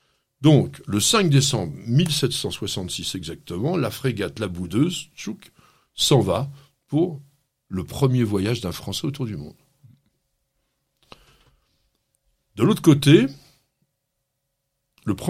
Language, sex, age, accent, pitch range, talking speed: French, male, 60-79, French, 115-145 Hz, 100 wpm